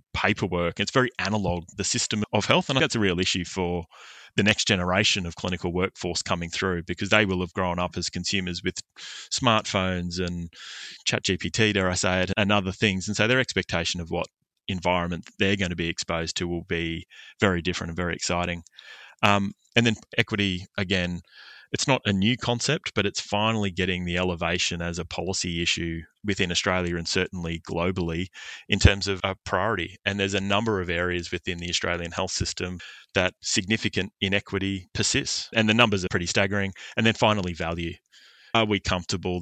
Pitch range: 90-105 Hz